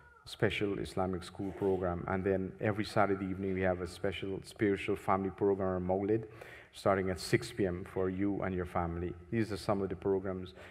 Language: English